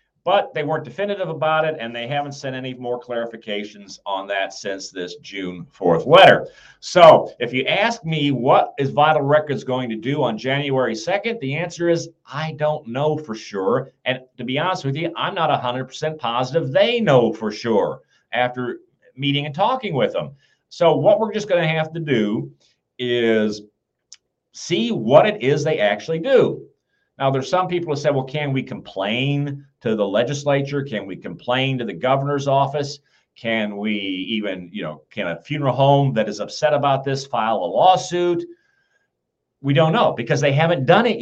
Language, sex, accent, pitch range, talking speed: English, male, American, 125-165 Hz, 185 wpm